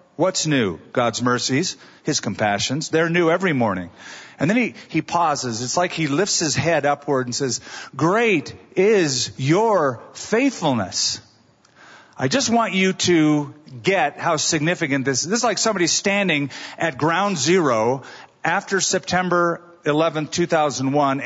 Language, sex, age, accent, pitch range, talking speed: English, male, 40-59, American, 130-190 Hz, 140 wpm